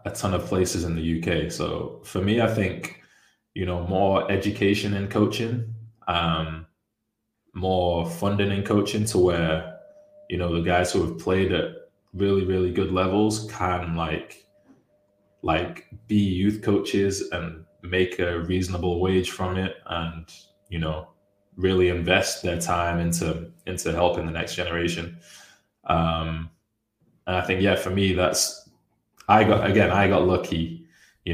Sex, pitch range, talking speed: male, 85-95 Hz, 145 wpm